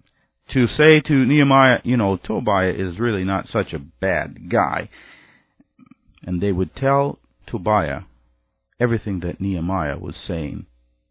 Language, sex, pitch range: English, male, 80-115 Hz